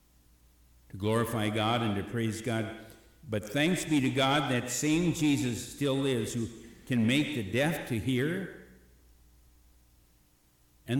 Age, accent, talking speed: 60-79, American, 135 wpm